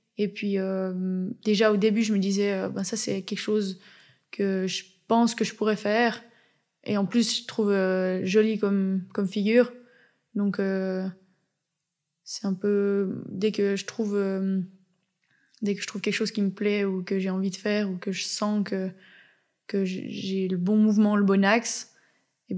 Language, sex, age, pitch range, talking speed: French, female, 20-39, 190-215 Hz, 190 wpm